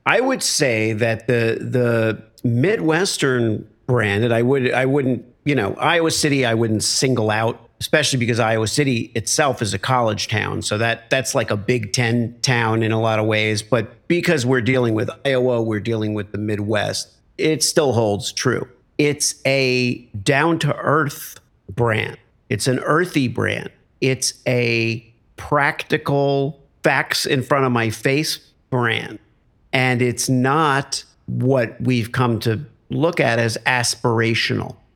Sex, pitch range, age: male, 110-135 Hz, 50-69